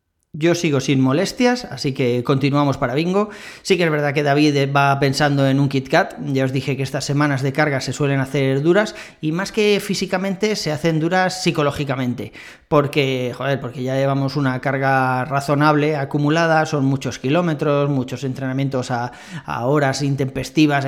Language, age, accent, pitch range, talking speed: Spanish, 30-49, Spanish, 135-165 Hz, 170 wpm